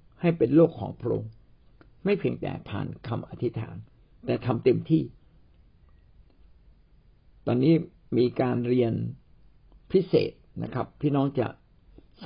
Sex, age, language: male, 60-79, Thai